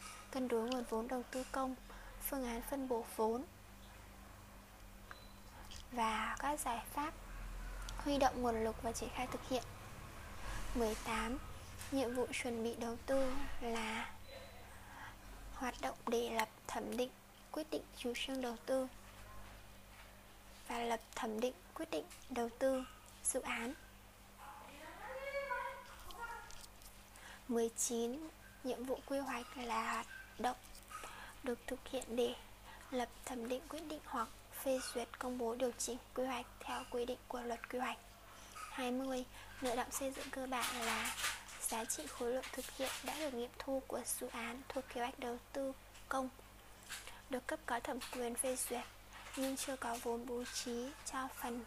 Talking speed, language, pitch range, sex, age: 150 wpm, Vietnamese, 225-265 Hz, female, 20-39